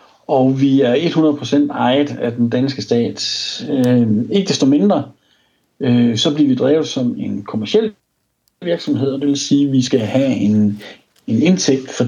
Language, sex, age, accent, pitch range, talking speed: Danish, male, 60-79, native, 120-150 Hz, 165 wpm